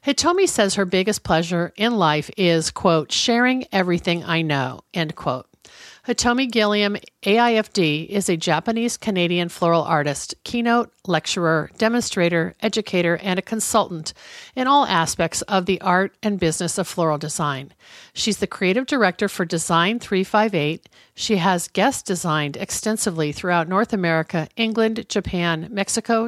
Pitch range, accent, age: 165-215 Hz, American, 50-69